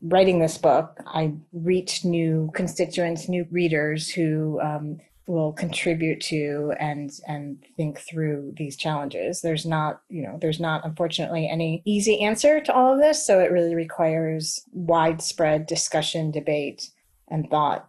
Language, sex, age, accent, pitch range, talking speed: English, female, 30-49, American, 155-180 Hz, 145 wpm